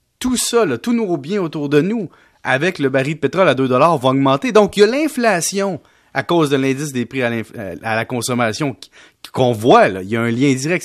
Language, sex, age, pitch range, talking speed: French, male, 30-49, 135-180 Hz, 230 wpm